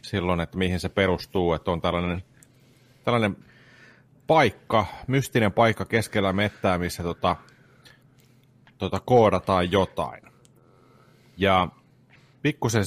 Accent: native